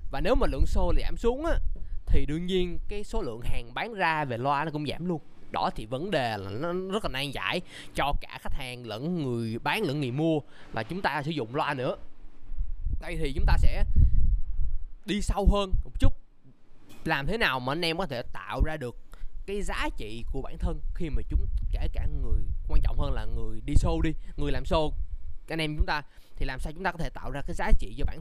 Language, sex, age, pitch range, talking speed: Vietnamese, male, 20-39, 100-165 Hz, 240 wpm